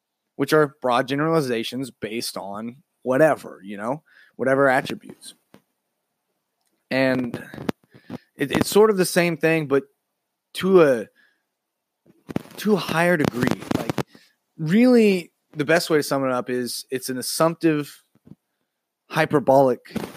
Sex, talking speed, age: male, 120 wpm, 20-39